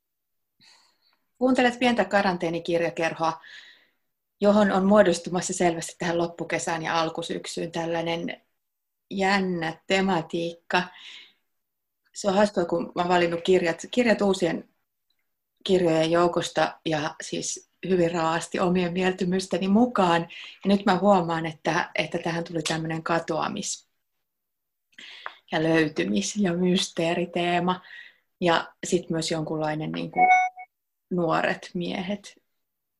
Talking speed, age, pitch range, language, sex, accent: 100 wpm, 30-49, 170-205 Hz, Finnish, female, native